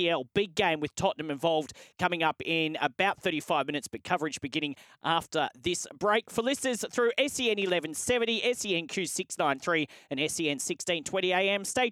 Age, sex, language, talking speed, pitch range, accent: 30-49, male, English, 145 wpm, 155-200 Hz, Australian